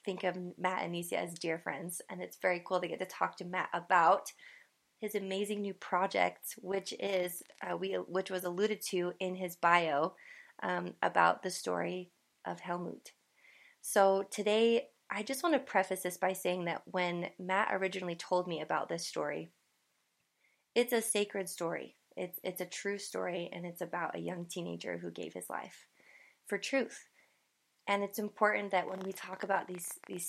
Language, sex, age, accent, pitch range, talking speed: English, female, 20-39, American, 175-205 Hz, 180 wpm